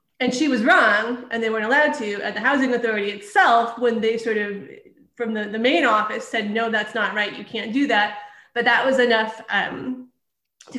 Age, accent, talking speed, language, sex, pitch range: 30-49, American, 210 wpm, English, female, 205-255 Hz